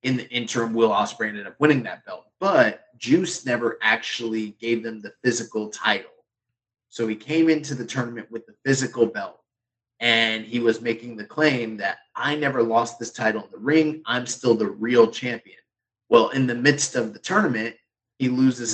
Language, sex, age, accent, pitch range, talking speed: English, male, 30-49, American, 115-130 Hz, 185 wpm